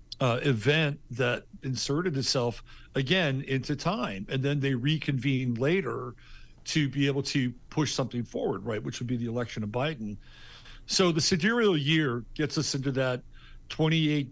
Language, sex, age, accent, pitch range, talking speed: English, male, 50-69, American, 125-155 Hz, 155 wpm